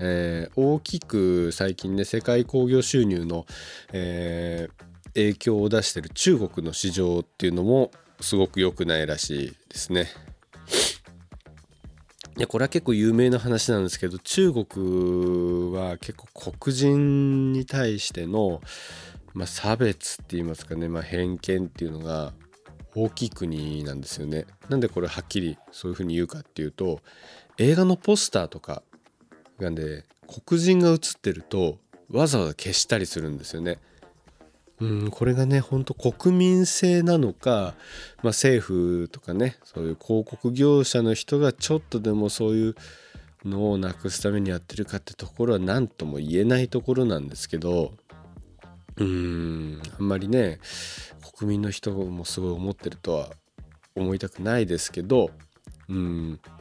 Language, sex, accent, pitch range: Japanese, male, native, 85-115 Hz